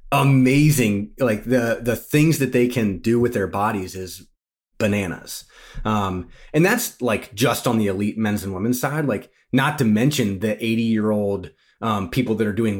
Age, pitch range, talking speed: 30-49, 100-125 Hz, 185 wpm